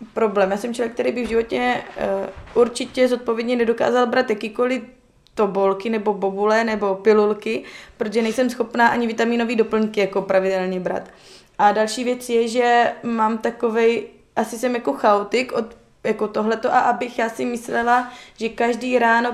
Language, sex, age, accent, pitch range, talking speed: Czech, female, 20-39, native, 215-245 Hz, 150 wpm